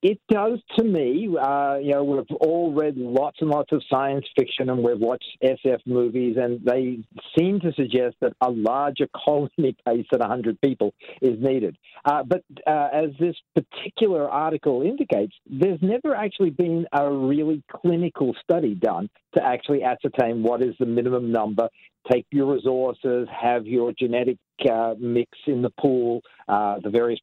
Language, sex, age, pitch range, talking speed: English, male, 50-69, 120-155 Hz, 165 wpm